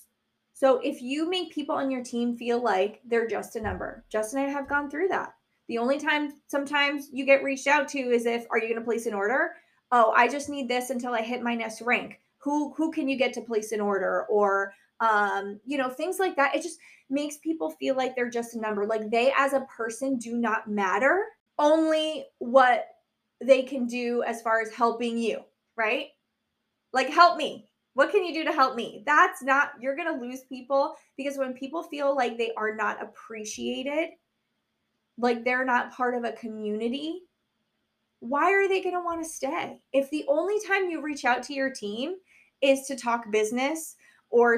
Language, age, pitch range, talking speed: English, 20-39, 235-290 Hz, 205 wpm